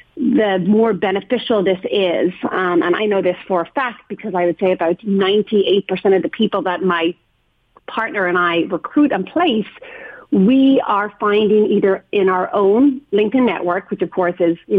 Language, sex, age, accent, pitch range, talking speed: English, female, 40-59, American, 180-225 Hz, 180 wpm